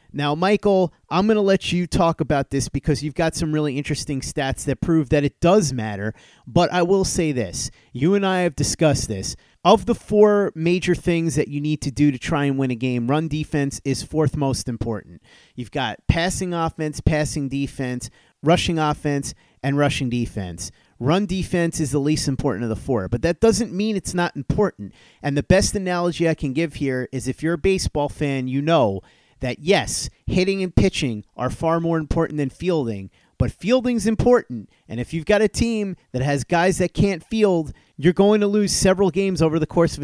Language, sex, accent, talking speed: English, male, American, 200 wpm